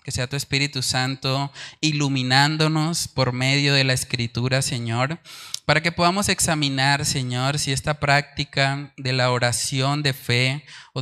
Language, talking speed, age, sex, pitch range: Spanish, 140 wpm, 20-39, male, 130-145 Hz